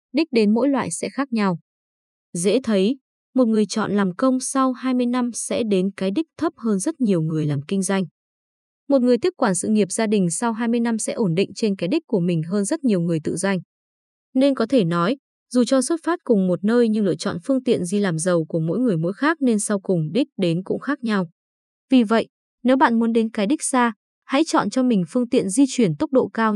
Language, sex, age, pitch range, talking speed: Vietnamese, female, 20-39, 190-255 Hz, 240 wpm